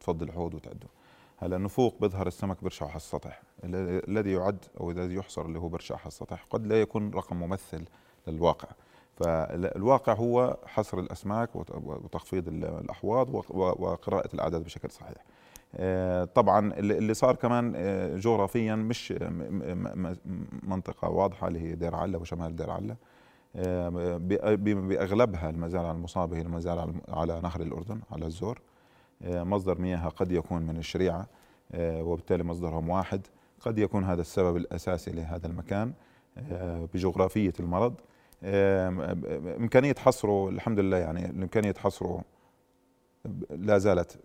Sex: male